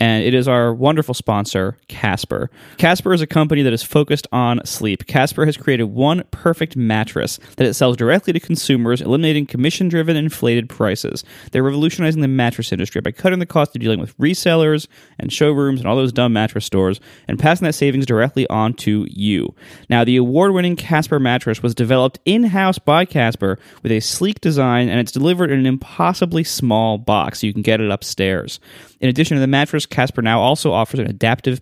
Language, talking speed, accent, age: English, 190 wpm, American, 20-39